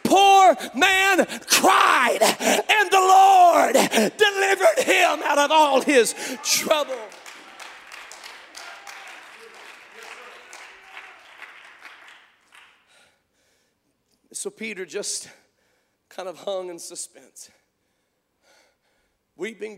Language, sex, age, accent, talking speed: English, male, 50-69, American, 65 wpm